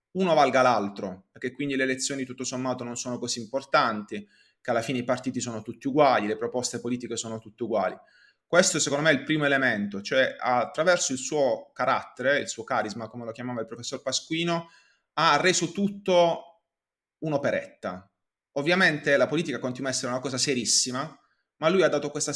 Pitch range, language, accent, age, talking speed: 120-145 Hz, Italian, native, 30-49, 175 wpm